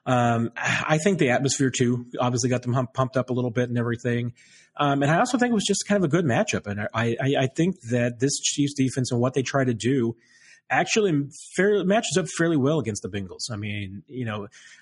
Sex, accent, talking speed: male, American, 235 wpm